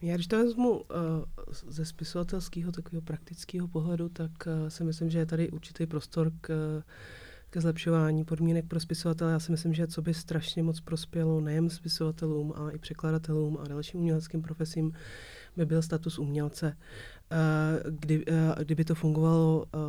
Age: 30-49